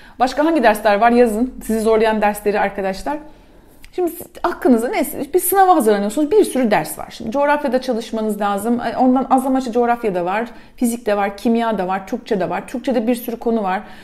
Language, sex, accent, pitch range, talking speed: Turkish, female, native, 215-280 Hz, 185 wpm